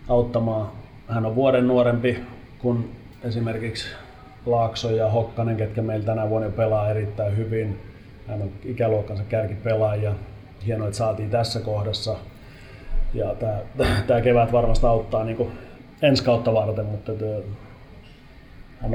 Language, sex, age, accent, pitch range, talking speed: Finnish, male, 30-49, native, 110-120 Hz, 115 wpm